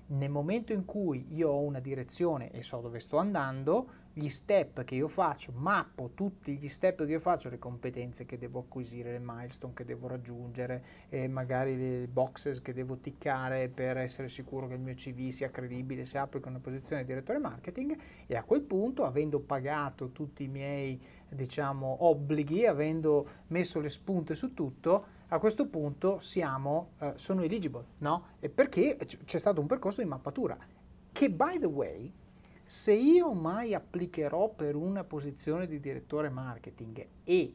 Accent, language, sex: native, Italian, male